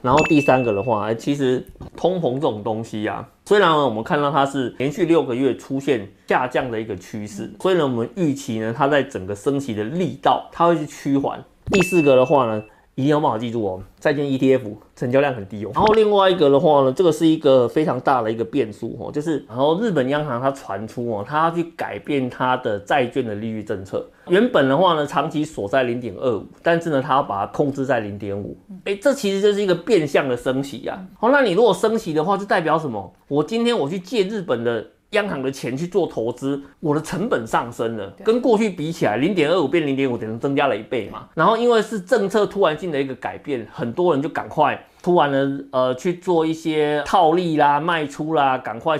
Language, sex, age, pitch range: Chinese, male, 30-49, 125-170 Hz